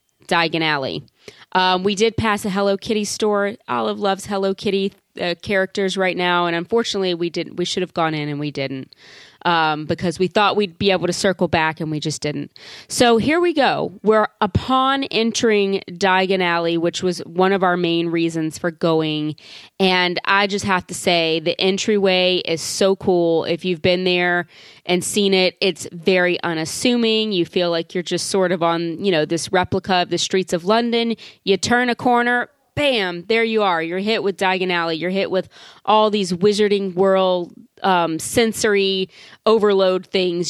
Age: 30-49